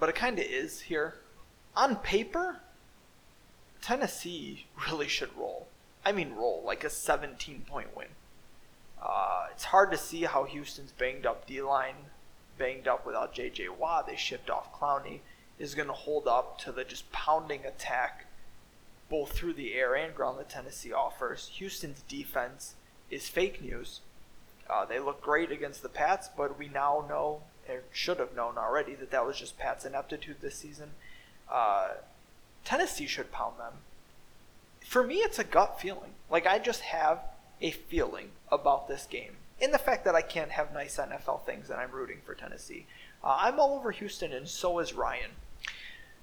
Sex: male